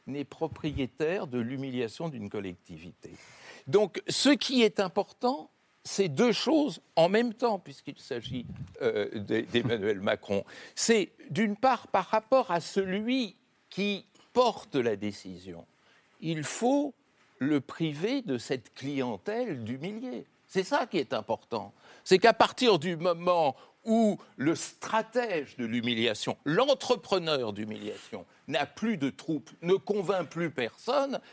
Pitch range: 145-235 Hz